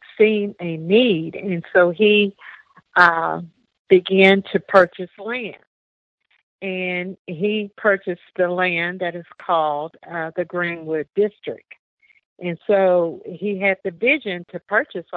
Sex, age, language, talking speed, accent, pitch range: female, 50-69, English, 125 wpm, American, 170-200 Hz